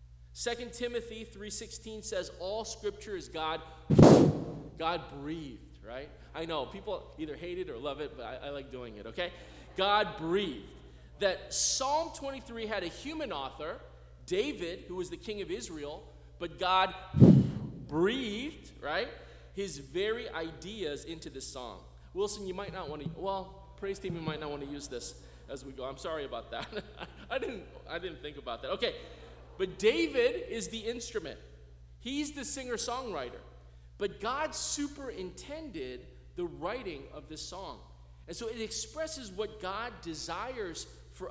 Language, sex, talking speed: English, male, 160 wpm